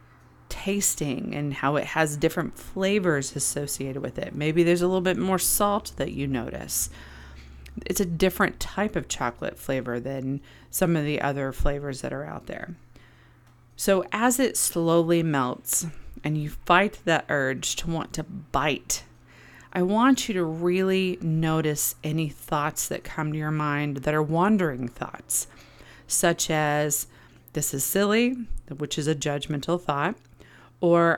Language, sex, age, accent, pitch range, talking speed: English, female, 30-49, American, 140-175 Hz, 150 wpm